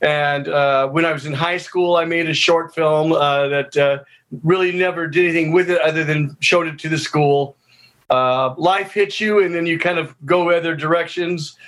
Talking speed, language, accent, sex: 210 wpm, English, American, male